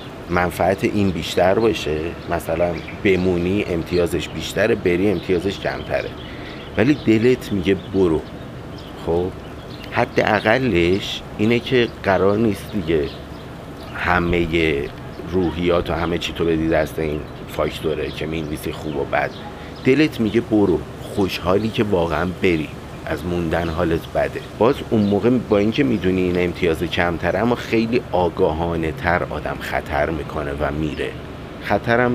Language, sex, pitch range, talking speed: Persian, male, 80-105 Hz, 130 wpm